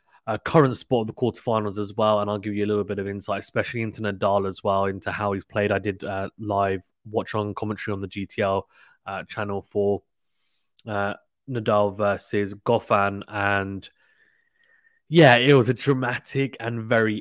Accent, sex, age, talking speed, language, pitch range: British, male, 20-39, 180 wpm, English, 100-115 Hz